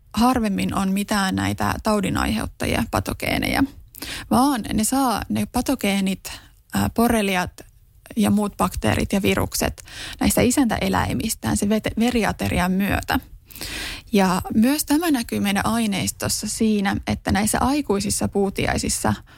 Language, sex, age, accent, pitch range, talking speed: Finnish, female, 20-39, native, 200-245 Hz, 100 wpm